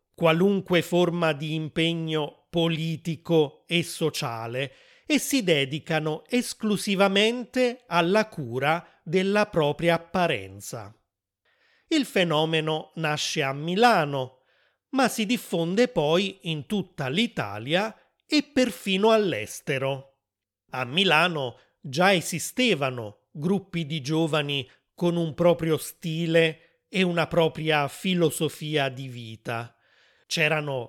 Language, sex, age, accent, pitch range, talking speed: Italian, male, 30-49, native, 145-190 Hz, 95 wpm